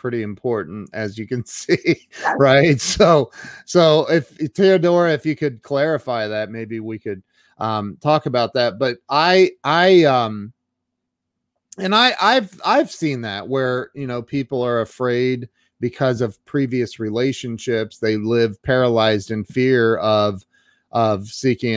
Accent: American